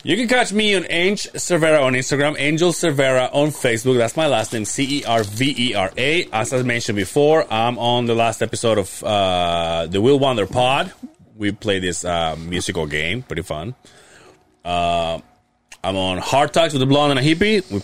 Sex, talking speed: male, 200 wpm